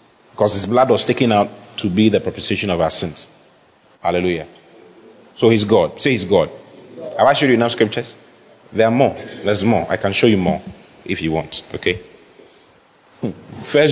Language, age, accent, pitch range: English, 30-49, Nigerian, 105-150 Hz